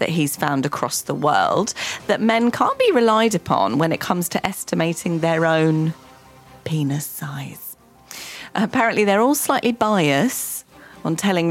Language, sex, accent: English, female, British